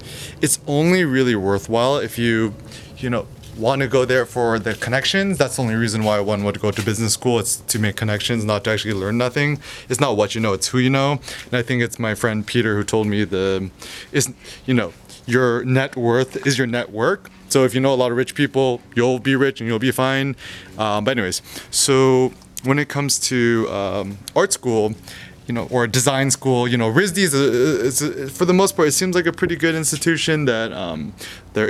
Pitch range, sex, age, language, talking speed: 105-130 Hz, male, 20-39, English, 225 wpm